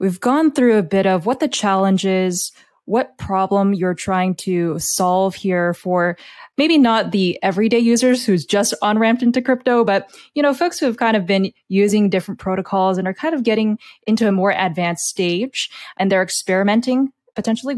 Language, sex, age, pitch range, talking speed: English, female, 20-39, 180-225 Hz, 185 wpm